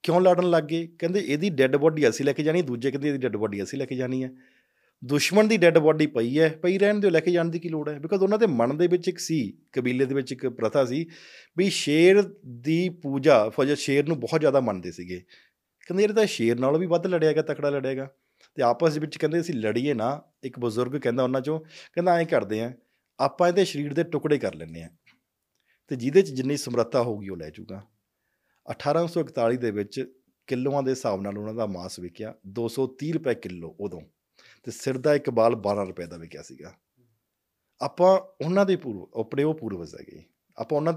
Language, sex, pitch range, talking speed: Punjabi, male, 120-165 Hz, 210 wpm